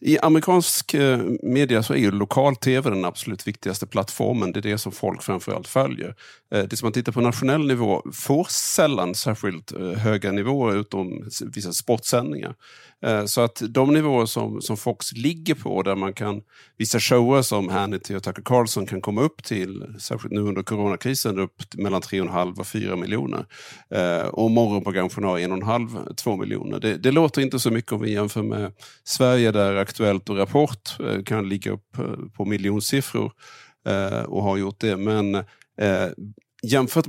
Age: 50-69